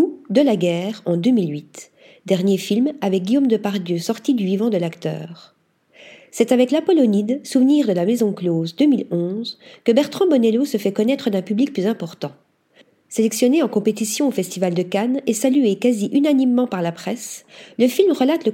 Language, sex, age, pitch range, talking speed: French, female, 40-59, 185-255 Hz, 175 wpm